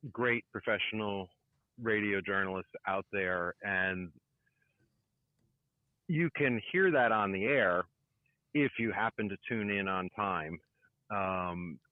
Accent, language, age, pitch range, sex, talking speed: American, English, 50-69, 100-130 Hz, male, 115 wpm